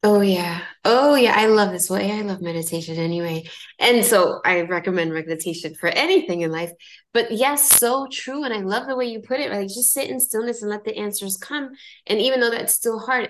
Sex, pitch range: female, 175-245 Hz